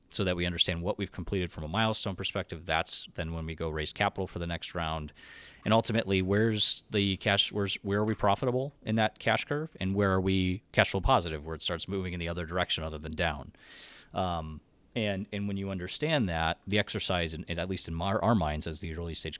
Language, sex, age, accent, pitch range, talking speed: English, male, 30-49, American, 85-110 Hz, 230 wpm